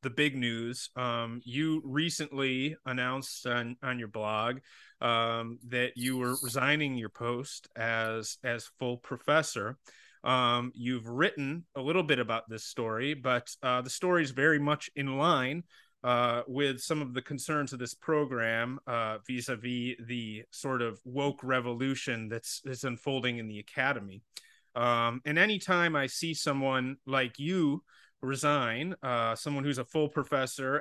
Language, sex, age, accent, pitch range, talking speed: English, male, 30-49, American, 120-145 Hz, 150 wpm